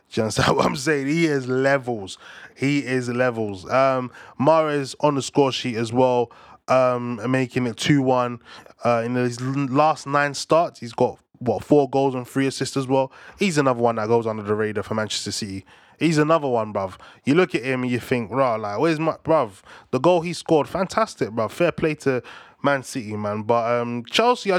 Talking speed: 205 wpm